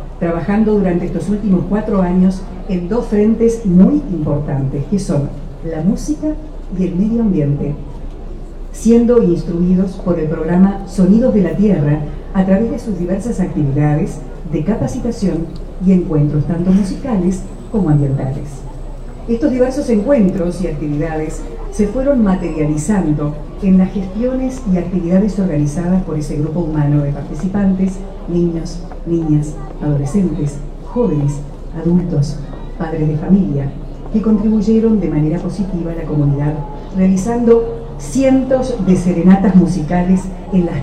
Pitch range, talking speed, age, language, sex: 155-205 Hz, 125 wpm, 50-69, Portuguese, female